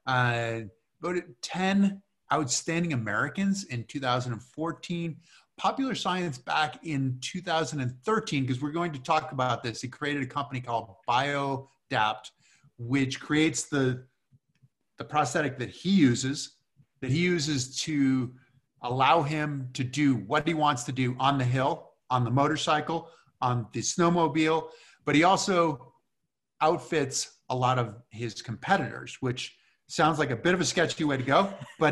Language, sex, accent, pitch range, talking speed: English, male, American, 125-160 Hz, 145 wpm